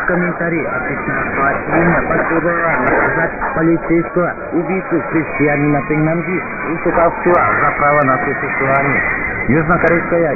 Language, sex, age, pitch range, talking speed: Russian, male, 50-69, 145-170 Hz, 95 wpm